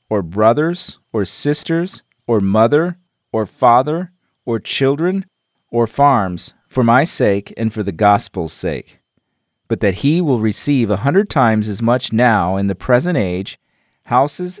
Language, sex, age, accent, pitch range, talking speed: English, male, 40-59, American, 105-140 Hz, 150 wpm